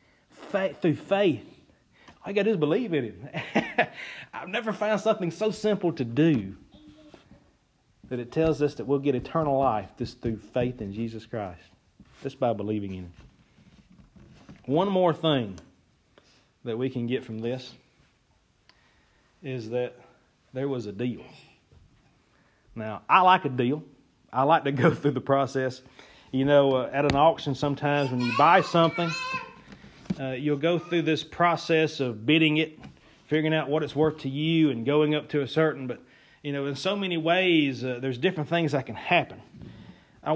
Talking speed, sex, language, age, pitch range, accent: 170 wpm, male, English, 40-59, 120-160 Hz, American